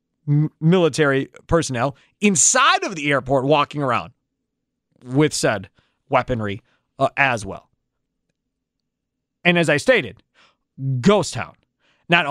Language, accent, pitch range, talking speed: English, American, 135-205 Hz, 100 wpm